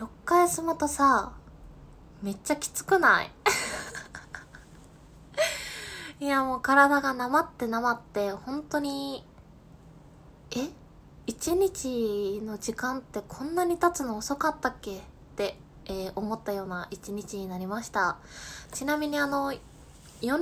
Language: Japanese